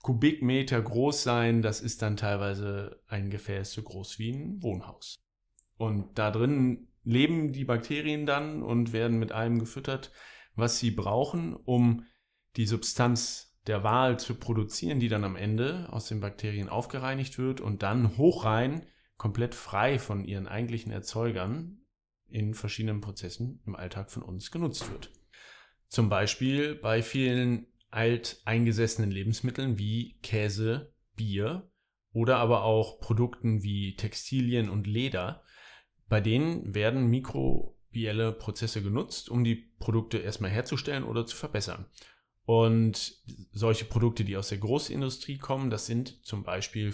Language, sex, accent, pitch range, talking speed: German, male, German, 105-125 Hz, 135 wpm